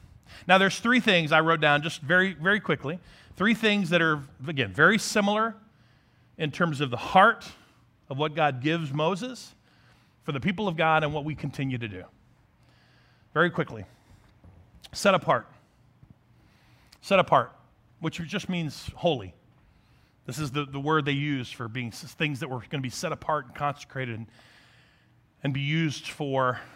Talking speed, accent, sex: 165 wpm, American, male